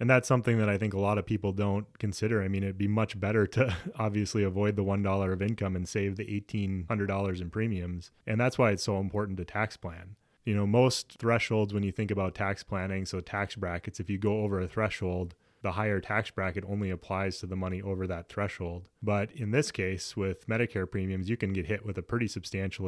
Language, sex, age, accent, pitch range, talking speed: English, male, 20-39, American, 95-110 Hz, 225 wpm